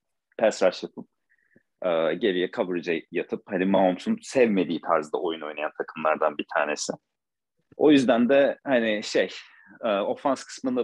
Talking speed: 115 wpm